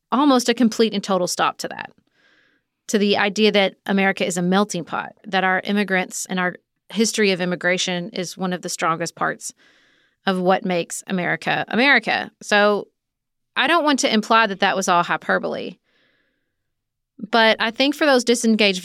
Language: English